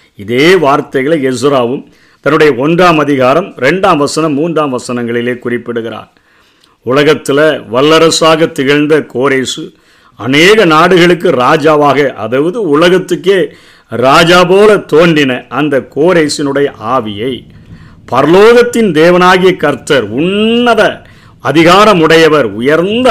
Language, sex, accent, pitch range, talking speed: Tamil, male, native, 145-185 Hz, 85 wpm